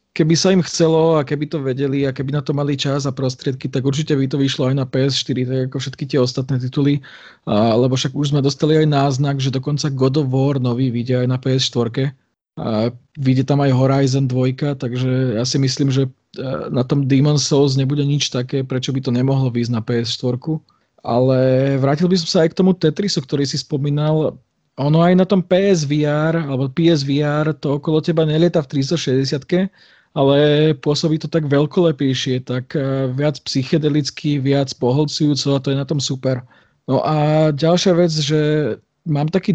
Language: Slovak